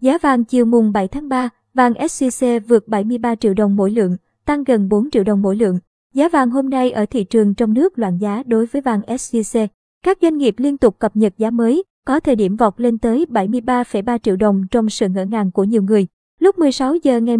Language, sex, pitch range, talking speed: Vietnamese, male, 215-260 Hz, 230 wpm